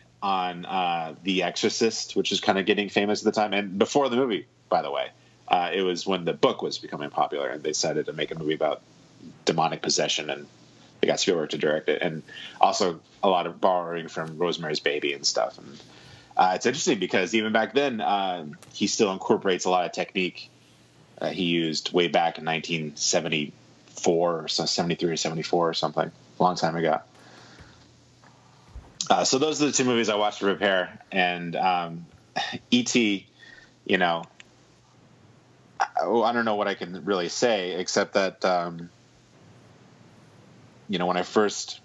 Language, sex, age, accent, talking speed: English, male, 30-49, American, 180 wpm